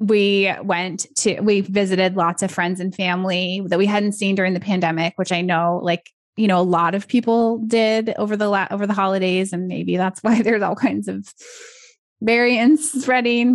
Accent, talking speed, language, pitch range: American, 195 wpm, English, 175-220 Hz